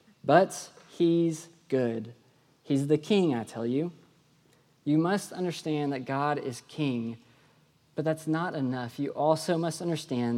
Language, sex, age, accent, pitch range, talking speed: English, male, 20-39, American, 130-165 Hz, 140 wpm